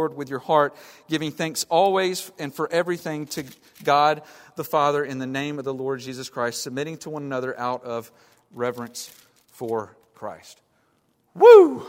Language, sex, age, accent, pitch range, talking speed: English, male, 40-59, American, 135-180 Hz, 155 wpm